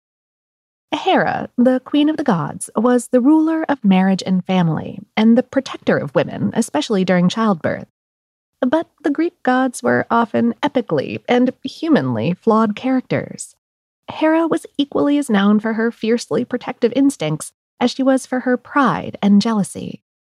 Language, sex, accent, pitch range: English, female, American, 195-265 Hz